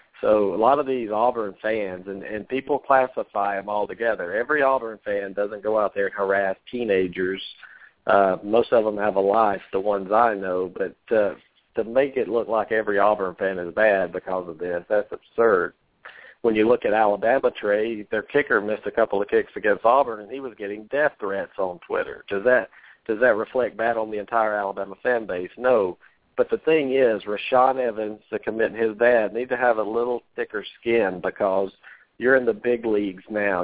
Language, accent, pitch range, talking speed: English, American, 100-125 Hz, 200 wpm